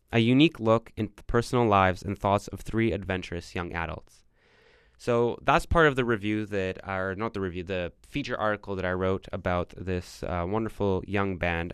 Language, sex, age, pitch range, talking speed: English, male, 20-39, 90-110 Hz, 190 wpm